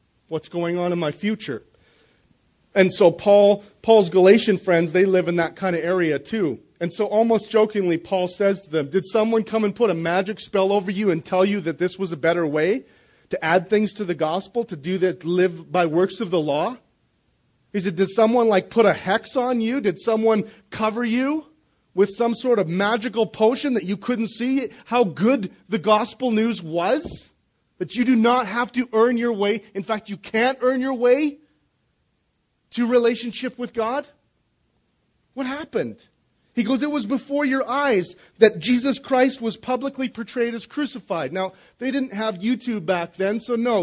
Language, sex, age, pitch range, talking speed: English, male, 40-59, 185-240 Hz, 190 wpm